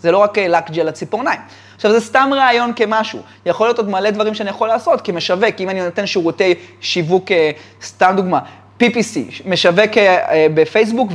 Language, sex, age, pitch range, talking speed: Hebrew, male, 20-39, 170-225 Hz, 165 wpm